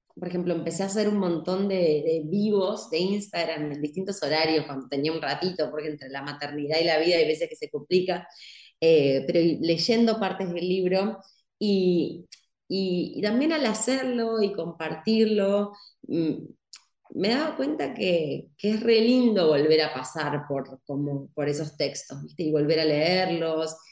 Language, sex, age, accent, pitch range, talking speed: Spanish, female, 20-39, Argentinian, 155-195 Hz, 165 wpm